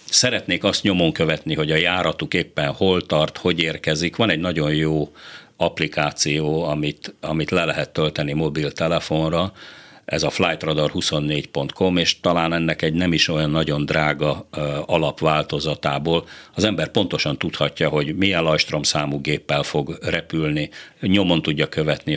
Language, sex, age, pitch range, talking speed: Hungarian, male, 50-69, 75-85 Hz, 140 wpm